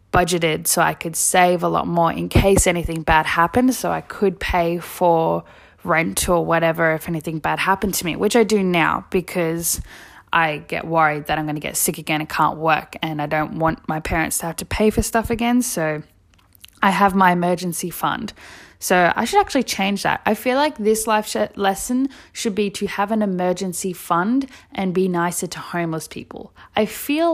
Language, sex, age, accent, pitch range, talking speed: English, female, 10-29, Australian, 165-220 Hz, 200 wpm